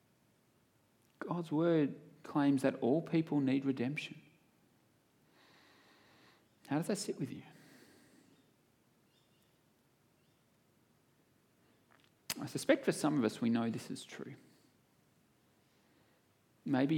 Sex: male